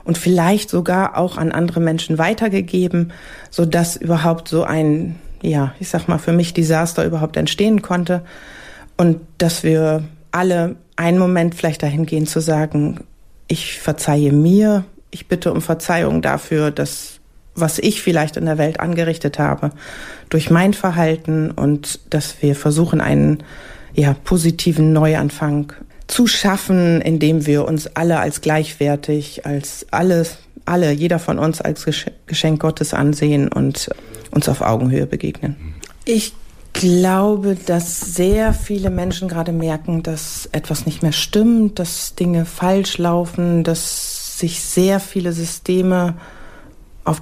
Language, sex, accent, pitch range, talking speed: German, female, German, 155-180 Hz, 135 wpm